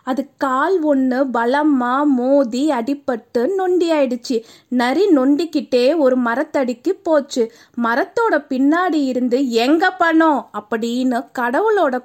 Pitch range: 250-325 Hz